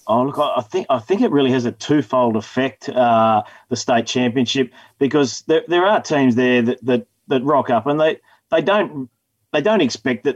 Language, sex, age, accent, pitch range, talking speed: English, male, 30-49, Australian, 120-140 Hz, 195 wpm